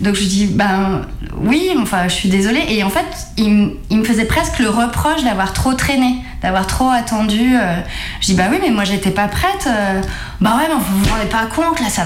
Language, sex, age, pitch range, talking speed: French, female, 20-39, 195-255 Hz, 235 wpm